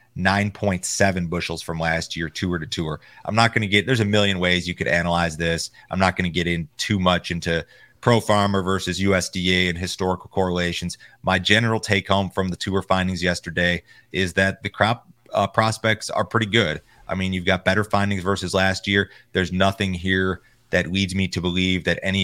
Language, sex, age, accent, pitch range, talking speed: English, male, 30-49, American, 85-100 Hz, 200 wpm